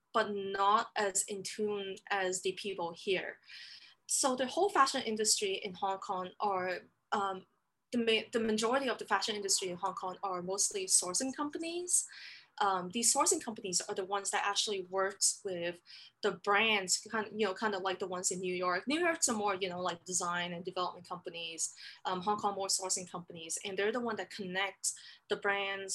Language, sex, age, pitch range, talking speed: English, female, 20-39, 185-220 Hz, 190 wpm